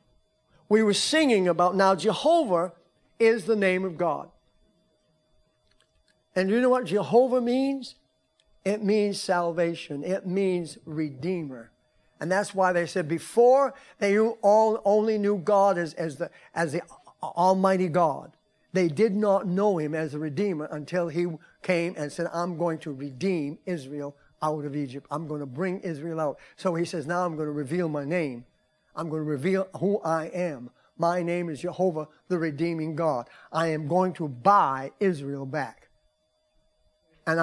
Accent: American